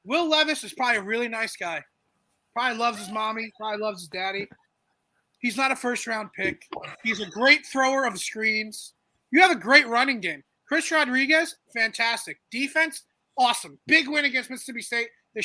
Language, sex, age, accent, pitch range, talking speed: English, male, 30-49, American, 225-285 Hz, 170 wpm